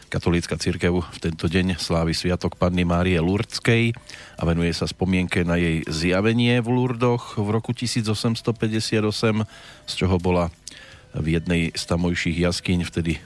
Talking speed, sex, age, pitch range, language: 140 wpm, male, 40-59, 85-115 Hz, Slovak